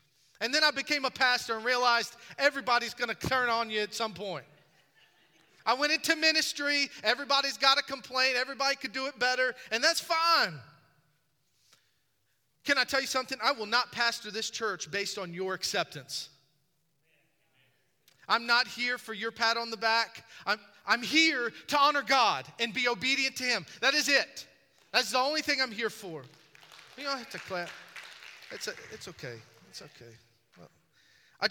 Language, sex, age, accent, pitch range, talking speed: English, male, 30-49, American, 165-255 Hz, 175 wpm